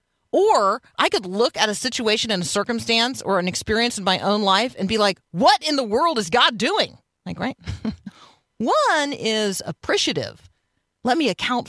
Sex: female